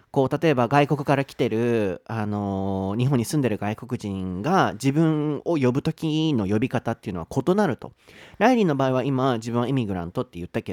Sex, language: male, Japanese